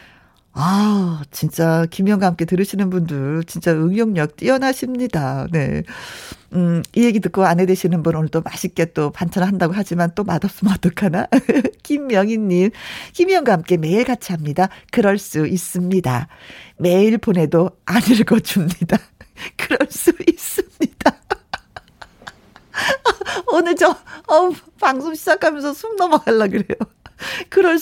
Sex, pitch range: female, 185-290 Hz